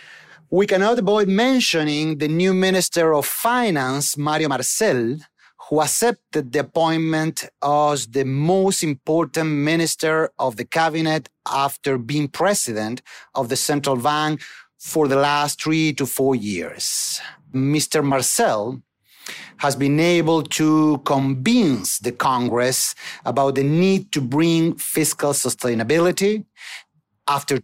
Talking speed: 115 wpm